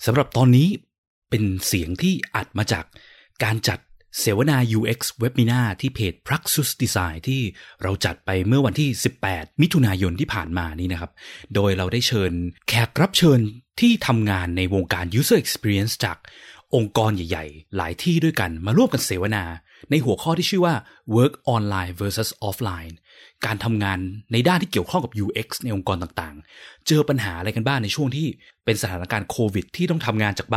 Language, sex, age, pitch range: Thai, male, 20-39, 100-135 Hz